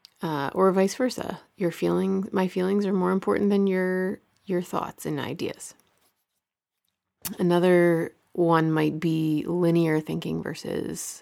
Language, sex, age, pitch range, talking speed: English, female, 30-49, 165-200 Hz, 130 wpm